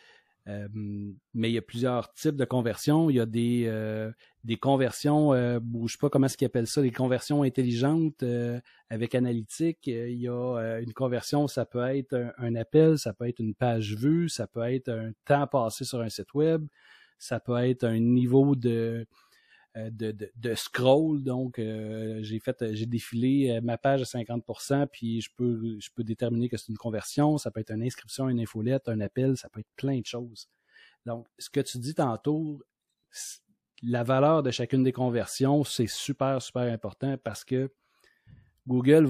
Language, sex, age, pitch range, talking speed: French, male, 40-59, 115-135 Hz, 190 wpm